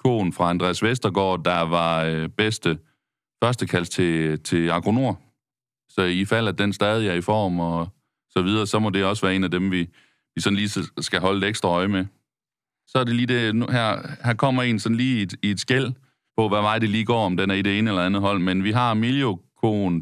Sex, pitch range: male, 90-115 Hz